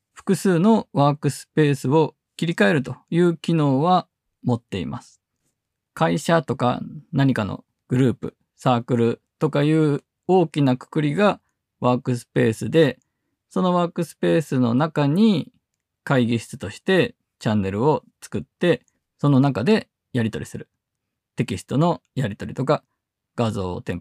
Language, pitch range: Japanese, 120-170 Hz